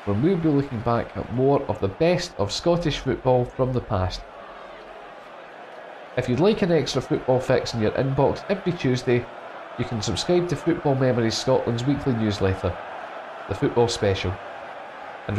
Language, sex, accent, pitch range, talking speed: English, male, British, 110-155 Hz, 160 wpm